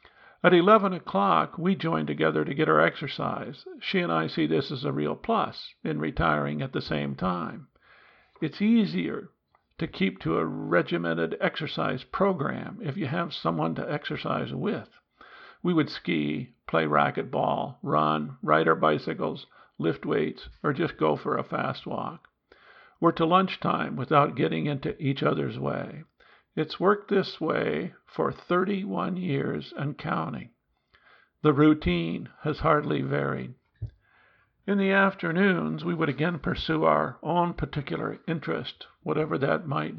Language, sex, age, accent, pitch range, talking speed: English, male, 50-69, American, 125-180 Hz, 145 wpm